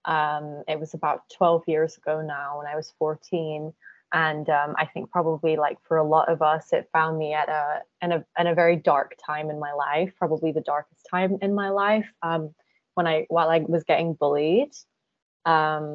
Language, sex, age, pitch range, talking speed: English, female, 20-39, 155-175 Hz, 200 wpm